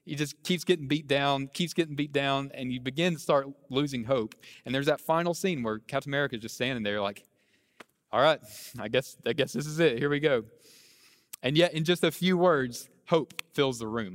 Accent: American